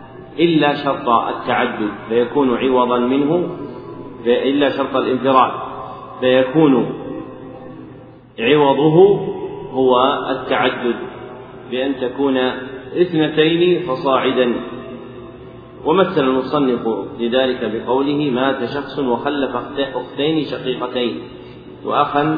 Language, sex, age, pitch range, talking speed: Arabic, male, 40-59, 120-140 Hz, 70 wpm